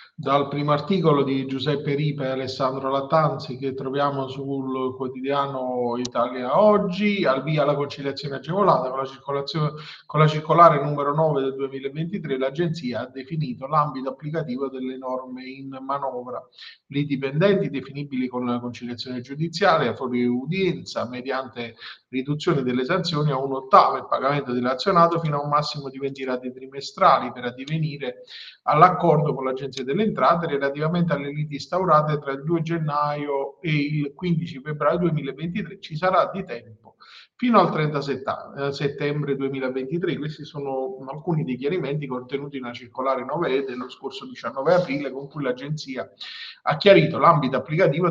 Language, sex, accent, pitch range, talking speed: Italian, male, native, 130-155 Hz, 145 wpm